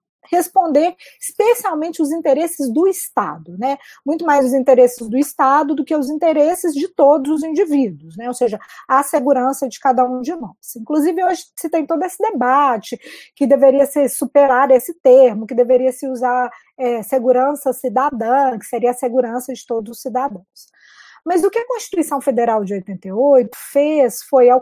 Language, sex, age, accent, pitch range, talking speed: Portuguese, female, 20-39, Brazilian, 250-320 Hz, 170 wpm